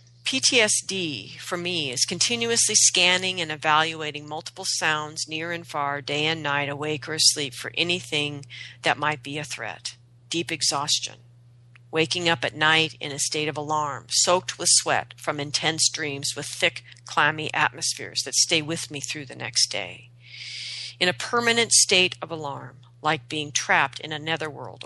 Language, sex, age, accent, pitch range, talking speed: English, female, 40-59, American, 125-170 Hz, 160 wpm